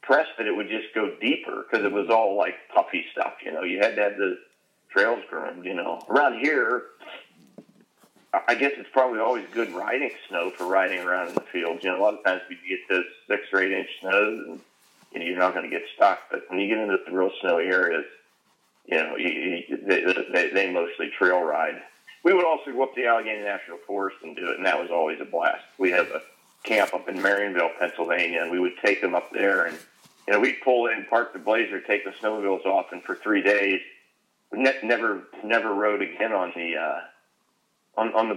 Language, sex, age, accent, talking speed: English, male, 40-59, American, 215 wpm